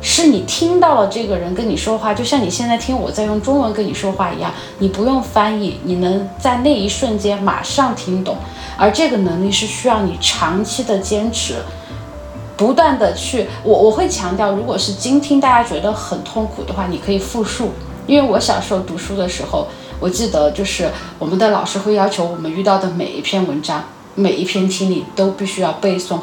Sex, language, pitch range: female, Chinese, 185-255 Hz